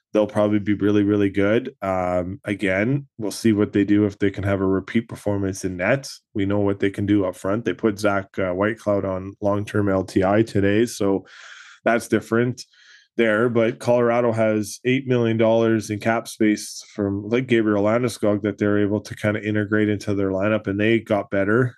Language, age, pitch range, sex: English, 20-39, 100-110 Hz, male